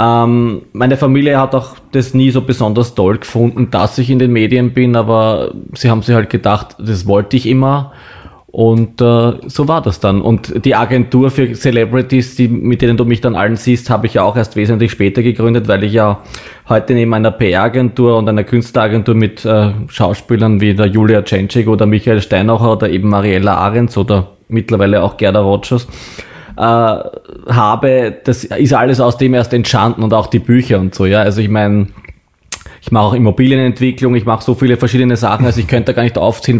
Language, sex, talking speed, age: German, male, 190 wpm, 20-39